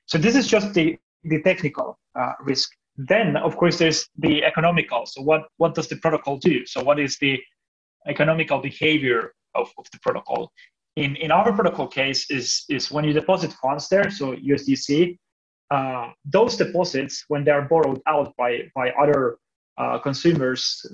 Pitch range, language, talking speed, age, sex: 135-165 Hz, English, 170 wpm, 30-49, male